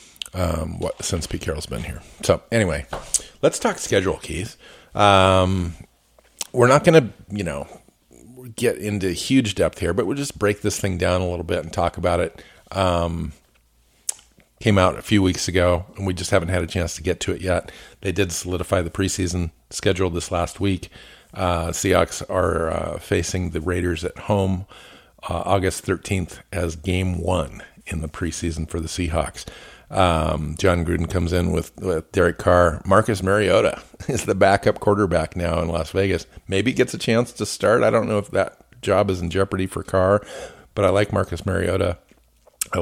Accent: American